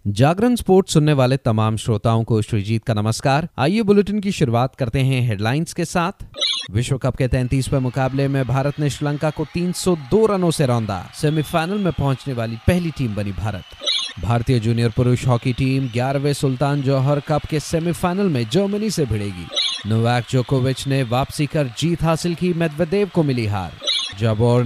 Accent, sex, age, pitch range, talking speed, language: native, male, 30-49, 115-155 Hz, 170 wpm, Hindi